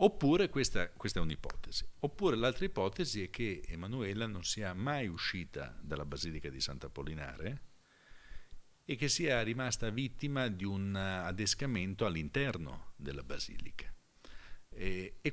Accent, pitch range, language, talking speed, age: native, 85-115 Hz, Italian, 130 wpm, 50-69